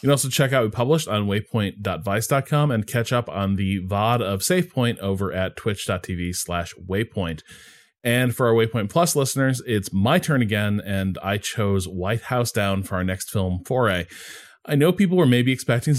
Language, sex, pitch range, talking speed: English, male, 100-135 Hz, 185 wpm